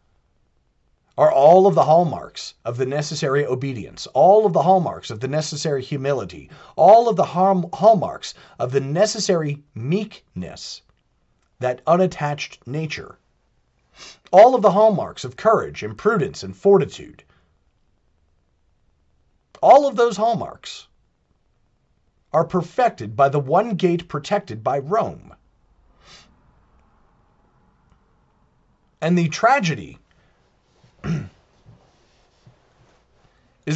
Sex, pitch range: male, 120-190 Hz